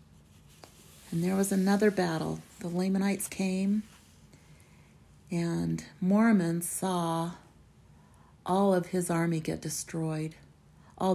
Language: English